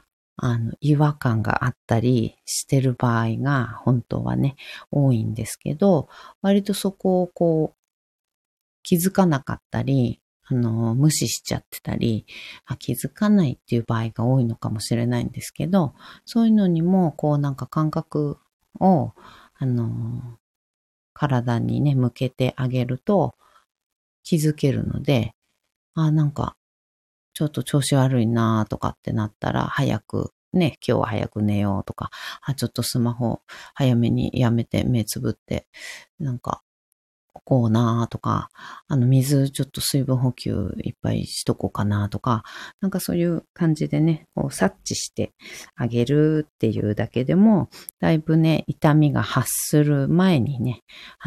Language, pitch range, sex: Japanese, 115-150 Hz, female